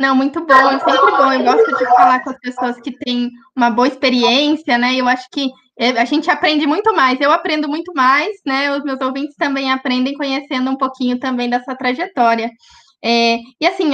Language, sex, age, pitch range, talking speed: Portuguese, female, 10-29, 250-330 Hz, 200 wpm